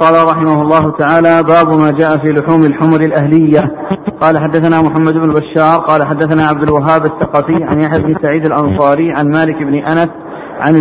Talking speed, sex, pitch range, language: 170 wpm, male, 150-165 Hz, Arabic